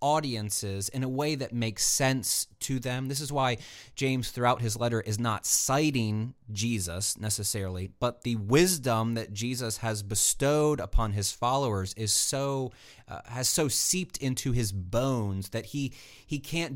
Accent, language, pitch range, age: American, English, 110-135 Hz, 30-49